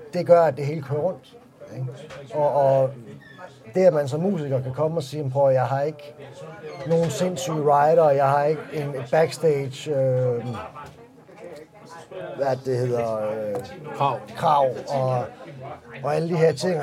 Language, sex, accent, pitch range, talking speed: Danish, male, native, 130-165 Hz, 155 wpm